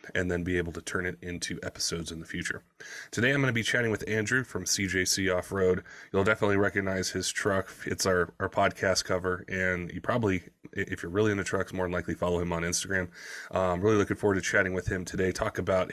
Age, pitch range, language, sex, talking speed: 20-39, 90-105 Hz, English, male, 225 wpm